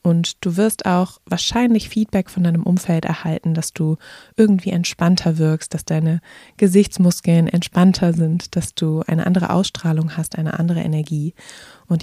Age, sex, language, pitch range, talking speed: 20-39, female, German, 160-185 Hz, 150 wpm